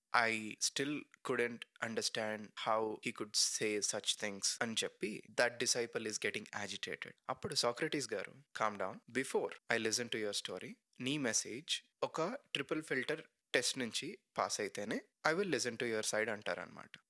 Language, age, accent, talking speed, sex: Telugu, 20-39, native, 150 wpm, male